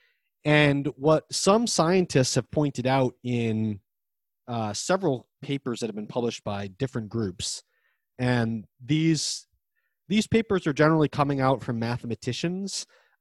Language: English